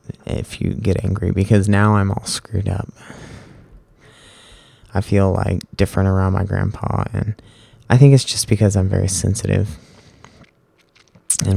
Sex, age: male, 20-39